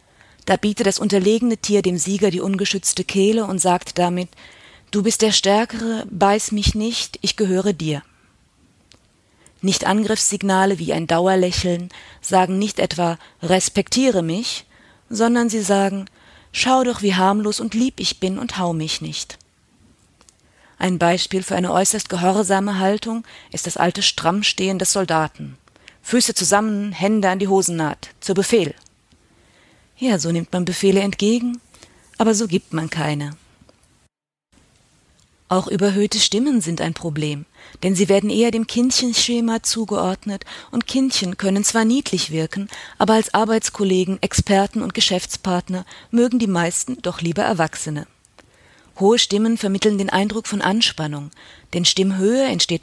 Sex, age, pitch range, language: female, 30-49, 175-215 Hz, German